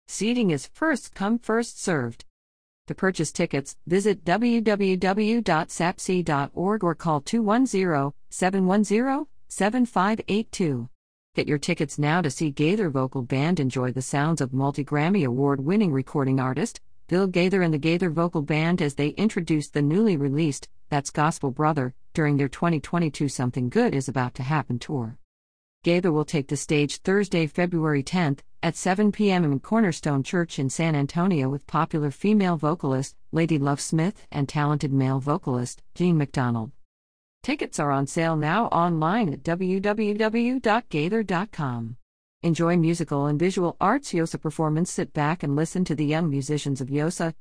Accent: American